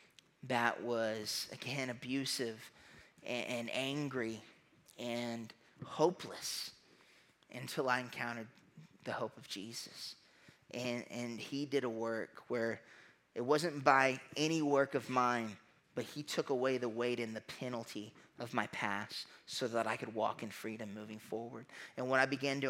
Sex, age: male, 20-39